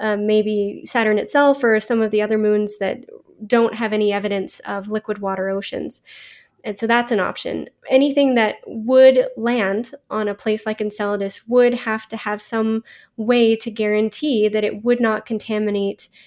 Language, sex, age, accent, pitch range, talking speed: English, female, 20-39, American, 205-230 Hz, 170 wpm